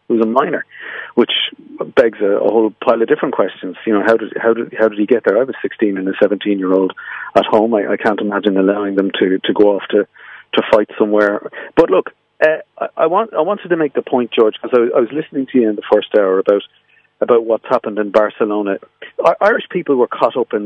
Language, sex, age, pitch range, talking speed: English, male, 40-59, 105-125 Hz, 230 wpm